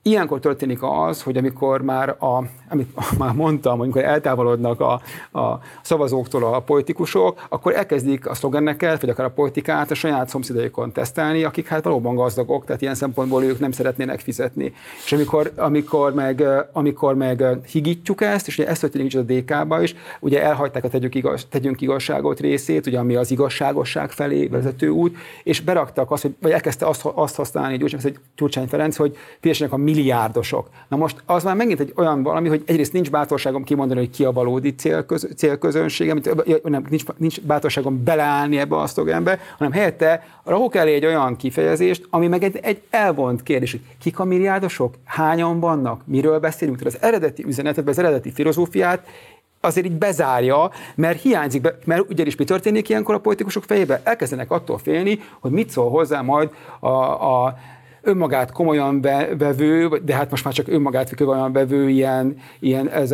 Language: Hungarian